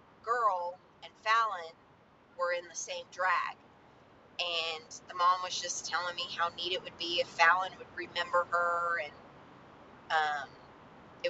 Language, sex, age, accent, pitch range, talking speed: English, female, 30-49, American, 170-215 Hz, 150 wpm